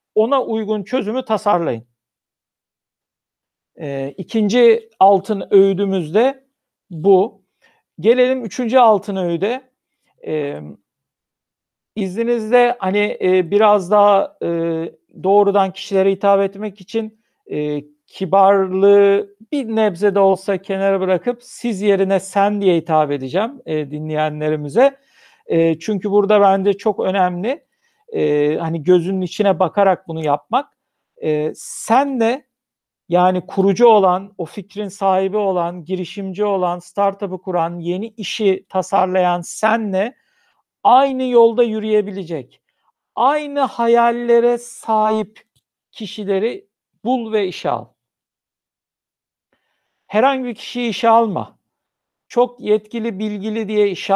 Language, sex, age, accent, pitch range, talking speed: Turkish, male, 50-69, native, 185-225 Hz, 100 wpm